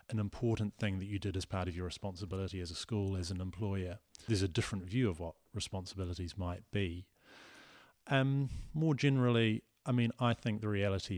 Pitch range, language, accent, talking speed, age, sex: 90-110 Hz, English, British, 190 wpm, 30-49, male